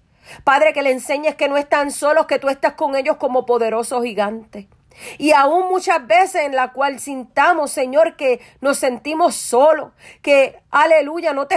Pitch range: 235-285 Hz